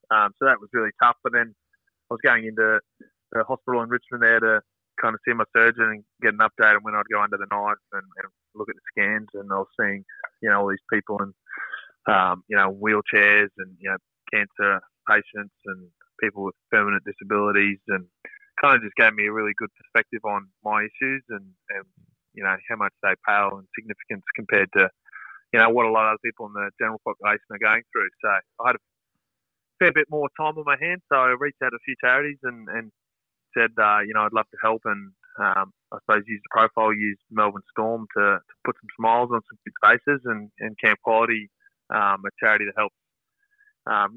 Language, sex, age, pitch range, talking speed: English, male, 20-39, 105-130 Hz, 220 wpm